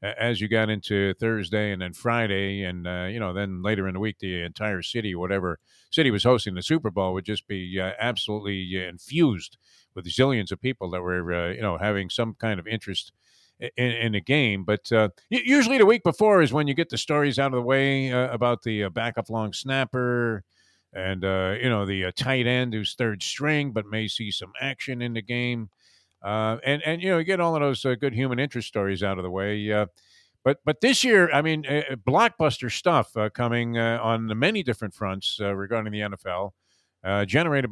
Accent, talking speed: American, 215 wpm